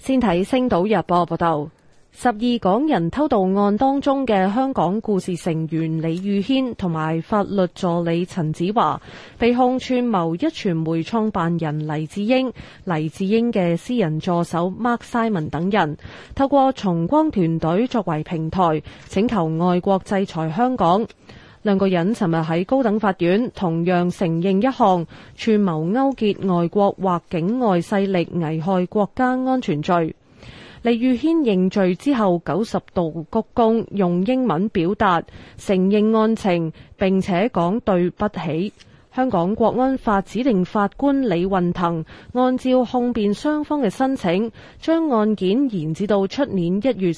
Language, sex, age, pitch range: Chinese, female, 20-39, 170-235 Hz